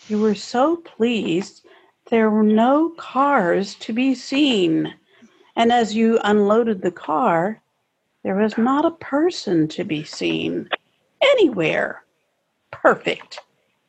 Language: English